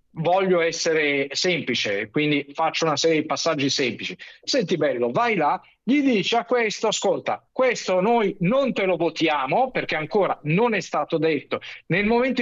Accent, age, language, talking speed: native, 50-69, Italian, 160 wpm